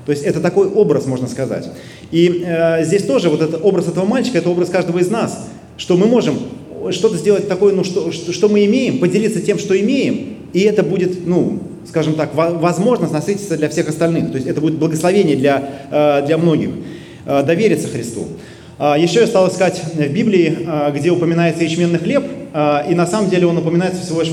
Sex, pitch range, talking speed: male, 150-185 Hz, 185 wpm